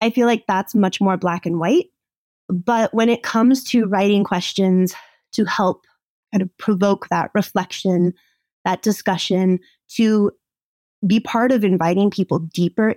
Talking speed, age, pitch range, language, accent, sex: 150 wpm, 20-39, 180-205 Hz, English, American, female